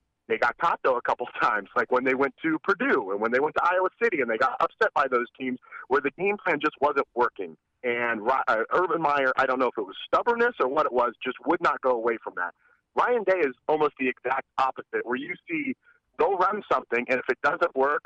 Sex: male